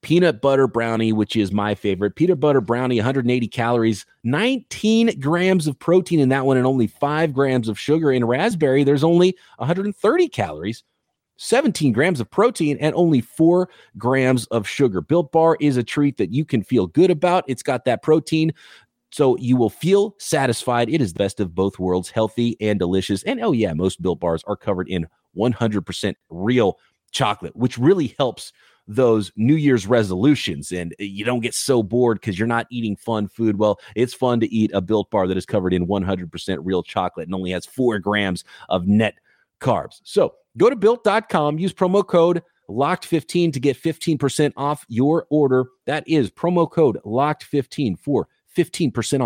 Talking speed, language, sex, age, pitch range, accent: 180 wpm, English, male, 30-49, 105-155 Hz, American